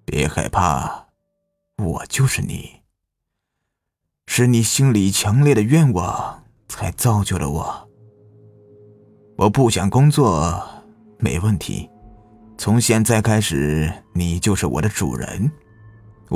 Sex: male